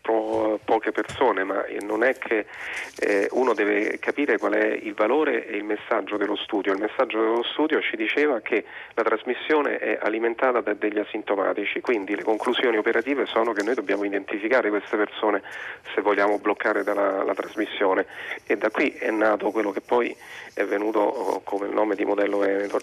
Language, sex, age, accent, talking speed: Italian, male, 30-49, native, 175 wpm